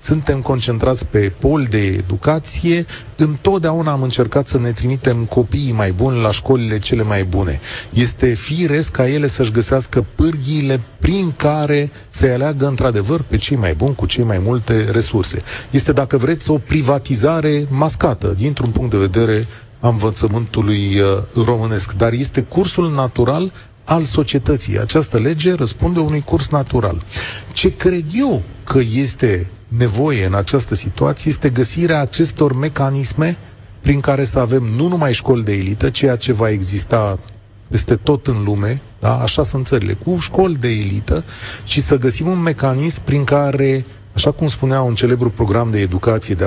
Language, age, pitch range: Romanian, 30-49, 105-145 Hz